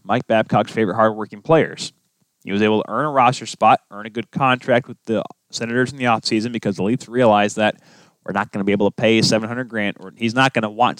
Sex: male